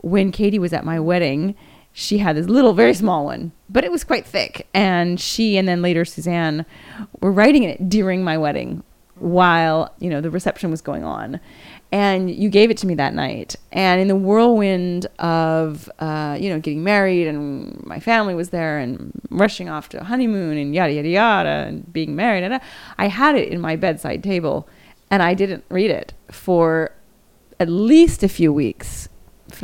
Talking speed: 190 wpm